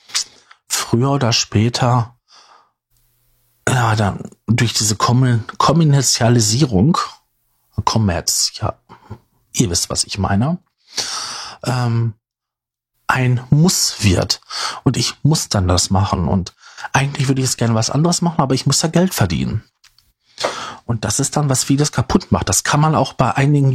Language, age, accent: German, 40-59, German